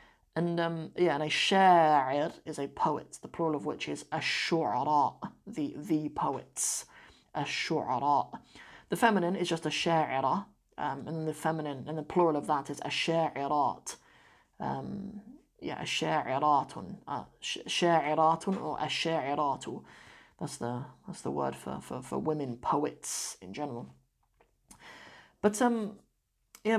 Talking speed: 130 wpm